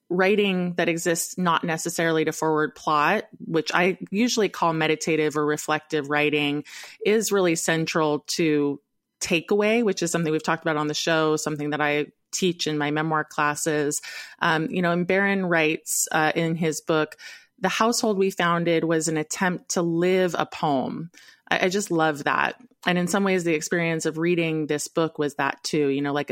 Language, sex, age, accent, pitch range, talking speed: English, female, 20-39, American, 150-175 Hz, 180 wpm